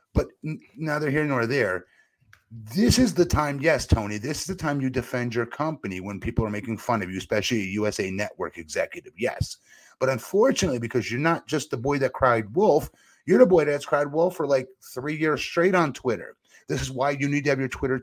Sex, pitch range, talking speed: male, 140-200 Hz, 215 wpm